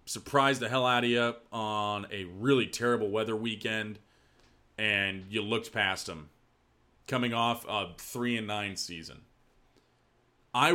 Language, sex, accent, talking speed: English, male, American, 135 wpm